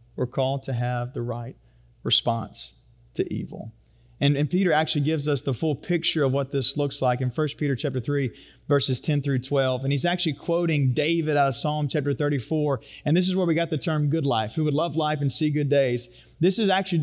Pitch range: 125-160 Hz